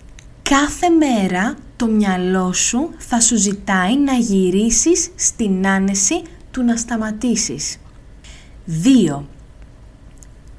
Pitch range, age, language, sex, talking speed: 185-255 Hz, 20-39, Greek, female, 90 wpm